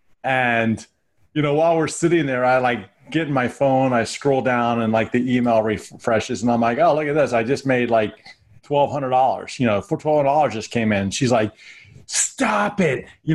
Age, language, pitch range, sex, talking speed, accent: 30-49, English, 130-165 Hz, male, 200 wpm, American